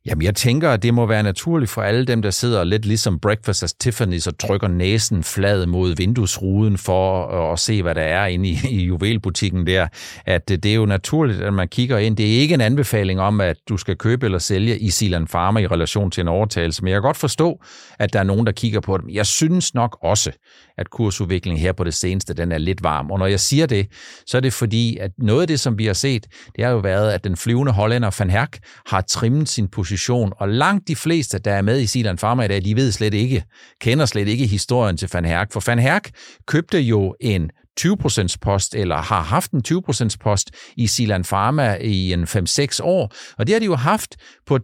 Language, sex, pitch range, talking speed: Danish, male, 100-135 Hz, 235 wpm